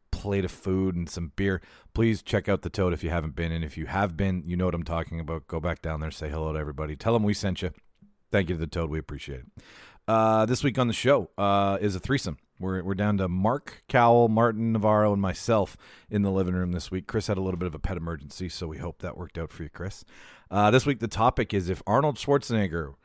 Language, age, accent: English, 40-59, American